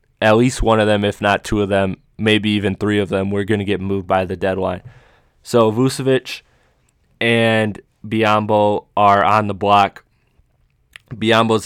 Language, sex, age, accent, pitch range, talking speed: English, male, 20-39, American, 95-110 Hz, 165 wpm